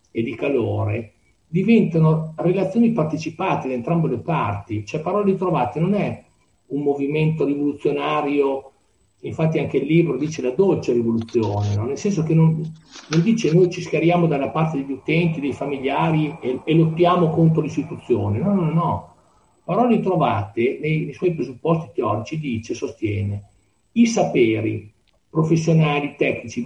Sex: male